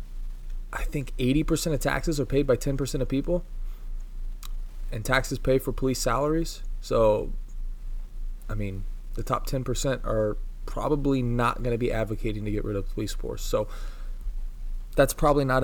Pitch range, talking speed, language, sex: 105-130 Hz, 155 wpm, English, male